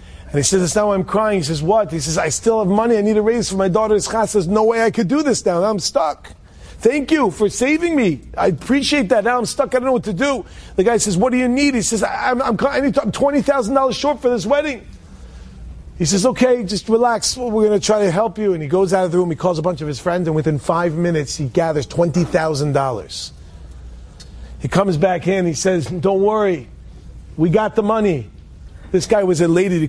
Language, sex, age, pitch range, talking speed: English, male, 40-59, 160-240 Hz, 240 wpm